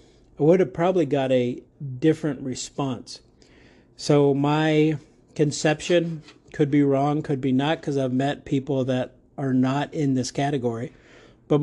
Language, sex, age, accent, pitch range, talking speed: English, male, 50-69, American, 125-150 Hz, 145 wpm